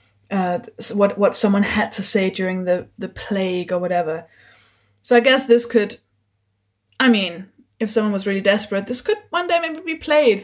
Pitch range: 180-240 Hz